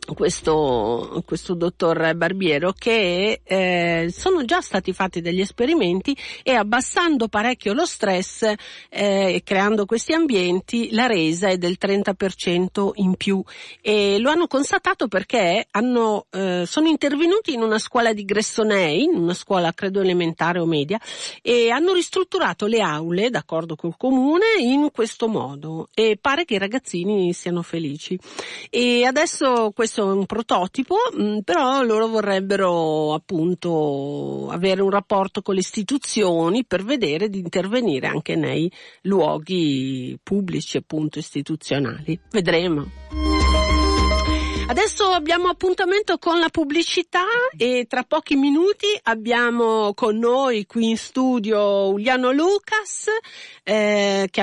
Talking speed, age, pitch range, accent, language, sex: 125 wpm, 50-69, 175-255 Hz, native, Italian, female